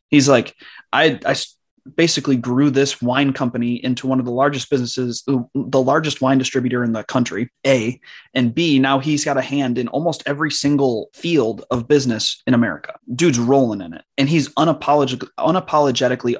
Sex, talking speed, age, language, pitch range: male, 170 wpm, 20-39, English, 120-145 Hz